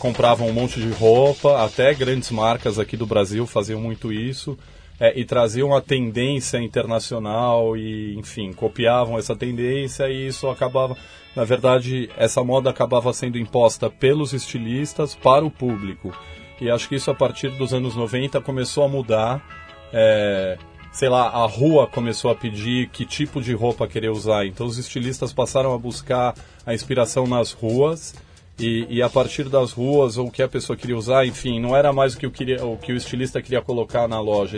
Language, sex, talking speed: Portuguese, male, 180 wpm